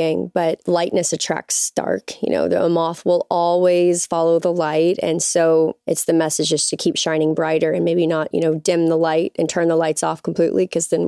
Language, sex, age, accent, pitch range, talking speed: English, female, 20-39, American, 160-180 Hz, 210 wpm